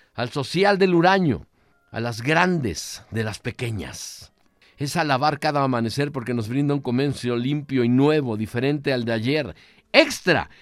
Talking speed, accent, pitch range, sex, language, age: 155 wpm, Mexican, 110-170 Hz, male, Spanish, 50-69